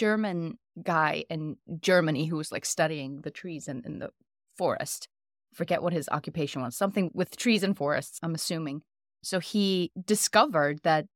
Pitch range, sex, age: 160-215 Hz, female, 20-39